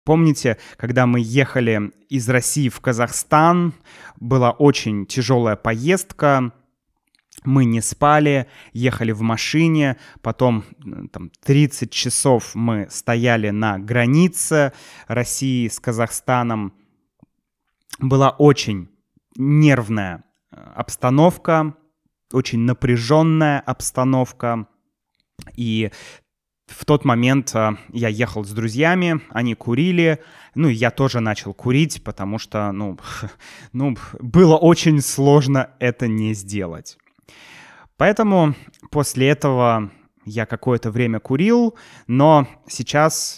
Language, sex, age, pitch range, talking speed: Russian, male, 20-39, 115-145 Hz, 95 wpm